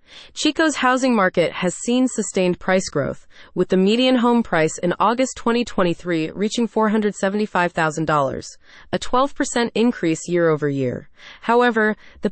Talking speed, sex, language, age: 115 wpm, female, English, 30-49